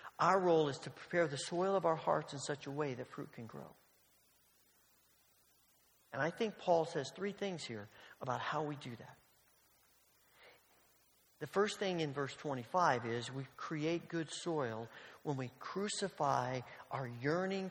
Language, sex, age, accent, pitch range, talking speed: English, male, 40-59, American, 135-175 Hz, 160 wpm